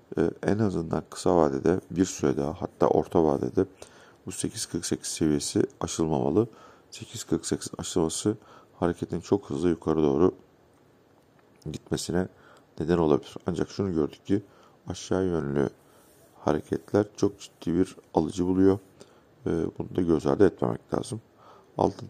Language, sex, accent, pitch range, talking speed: Turkish, male, native, 80-95 Hz, 115 wpm